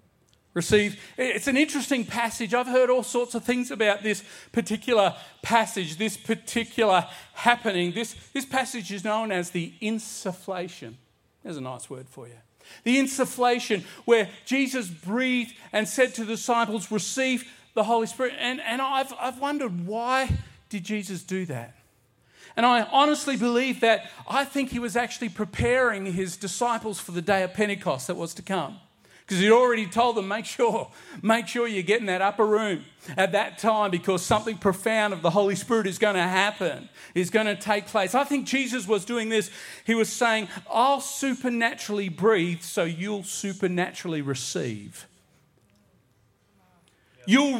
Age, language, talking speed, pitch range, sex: 40-59, English, 165 wpm, 185-240 Hz, male